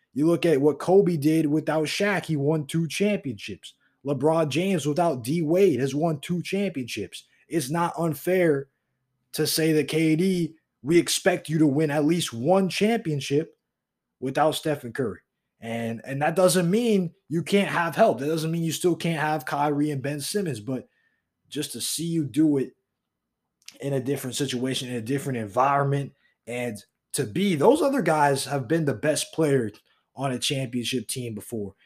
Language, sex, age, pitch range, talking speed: English, male, 20-39, 115-160 Hz, 170 wpm